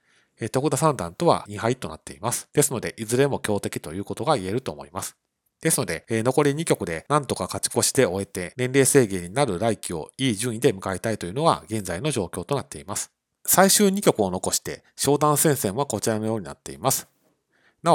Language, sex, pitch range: Japanese, male, 100-145 Hz